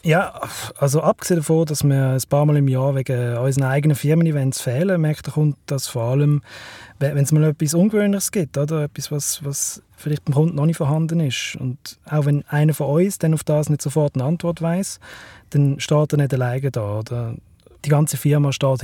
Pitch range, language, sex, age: 130-155 Hz, German, male, 30-49